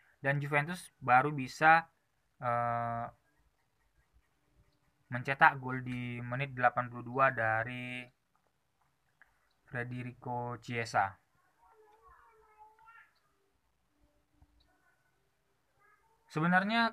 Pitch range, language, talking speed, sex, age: 115-140 Hz, Indonesian, 50 wpm, male, 20-39